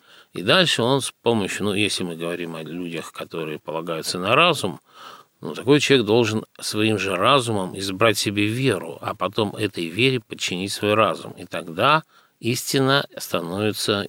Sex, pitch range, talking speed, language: male, 95-115 Hz, 155 wpm, Russian